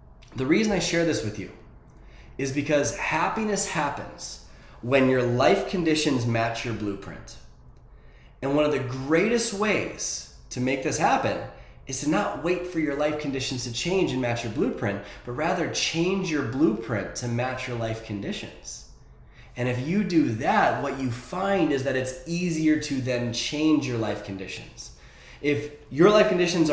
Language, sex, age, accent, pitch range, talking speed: English, male, 20-39, American, 120-170 Hz, 165 wpm